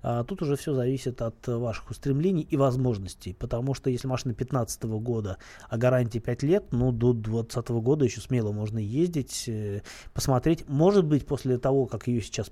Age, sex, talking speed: 20-39, male, 170 wpm